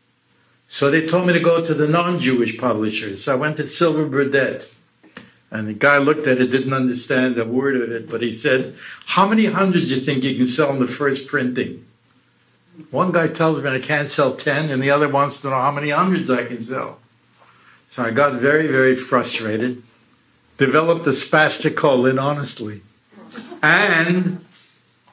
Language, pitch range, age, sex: English, 125-165 Hz, 60-79, male